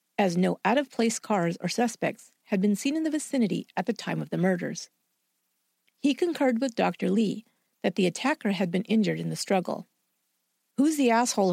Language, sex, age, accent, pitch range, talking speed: English, female, 50-69, American, 180-240 Hz, 180 wpm